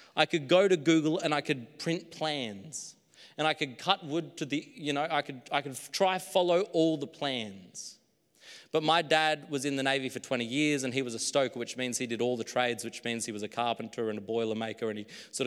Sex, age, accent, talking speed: male, 30-49, Australian, 240 wpm